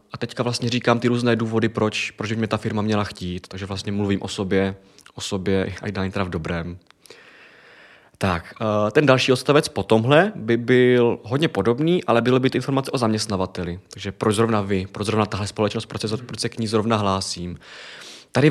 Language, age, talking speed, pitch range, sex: Czech, 20-39, 195 wpm, 110-140 Hz, male